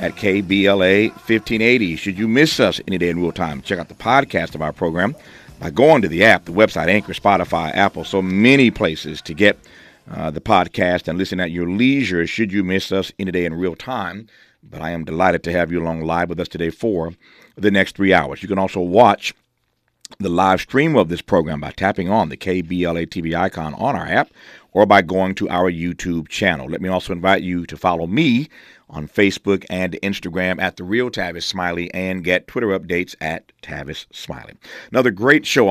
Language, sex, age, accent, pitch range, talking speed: English, male, 50-69, American, 90-110 Hz, 205 wpm